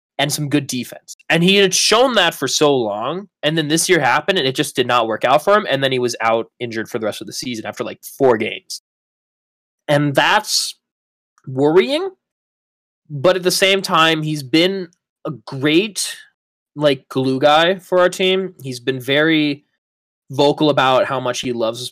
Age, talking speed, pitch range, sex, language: 20-39, 190 wpm, 125-175 Hz, male, English